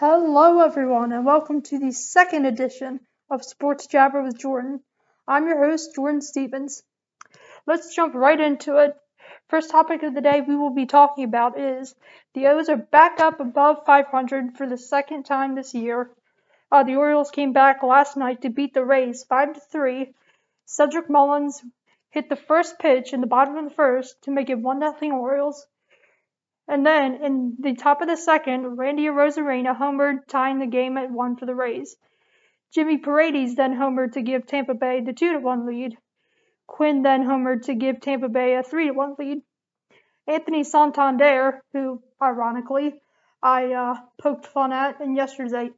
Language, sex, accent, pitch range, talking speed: English, female, American, 260-295 Hz, 165 wpm